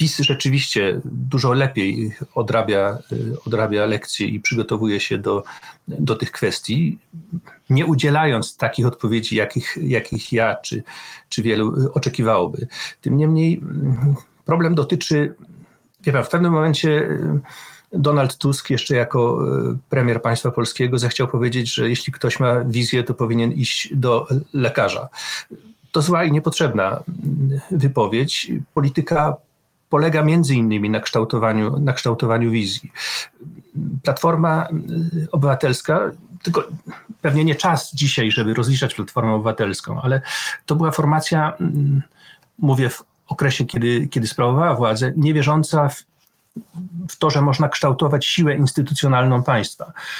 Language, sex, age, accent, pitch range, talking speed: Polish, male, 40-59, native, 120-155 Hz, 115 wpm